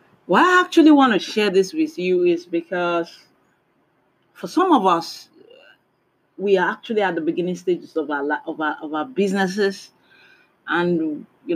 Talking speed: 160 wpm